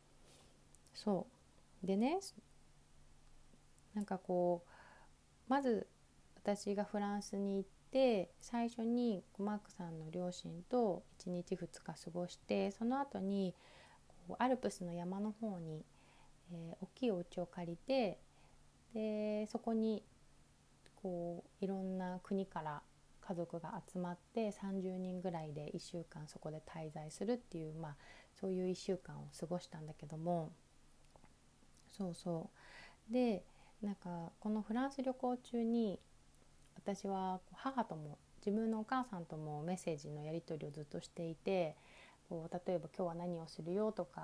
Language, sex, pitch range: Japanese, female, 170-210 Hz